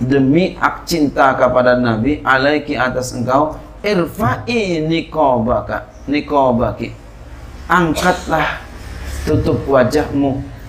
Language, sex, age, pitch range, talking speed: Indonesian, male, 40-59, 105-135 Hz, 80 wpm